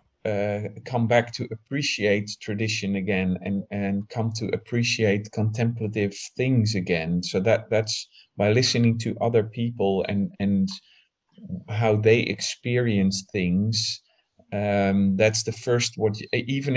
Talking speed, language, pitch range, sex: 125 wpm, English, 100-115 Hz, male